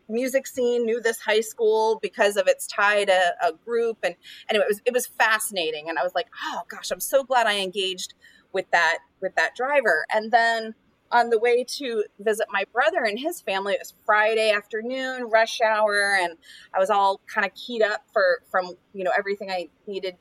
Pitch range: 195-275 Hz